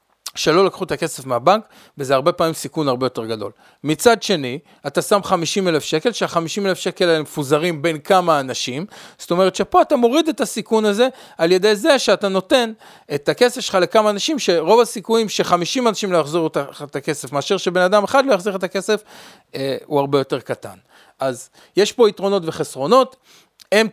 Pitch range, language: 140-190 Hz, Hebrew